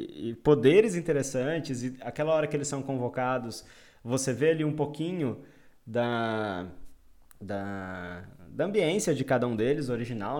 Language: Portuguese